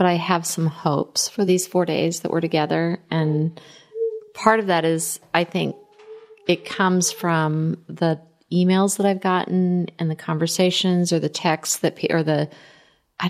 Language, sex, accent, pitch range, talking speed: English, female, American, 160-190 Hz, 165 wpm